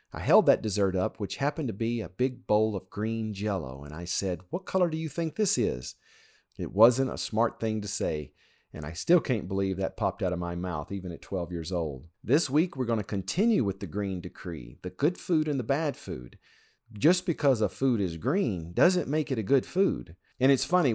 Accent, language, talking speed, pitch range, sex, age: American, English, 230 wpm, 95-130 Hz, male, 50-69